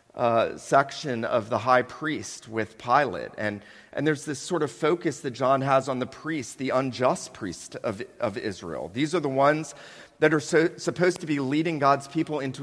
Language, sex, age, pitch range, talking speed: English, male, 40-59, 135-165 Hz, 195 wpm